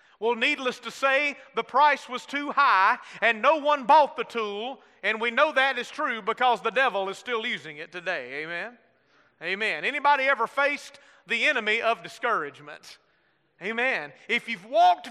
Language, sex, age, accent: English, male, 30-49, American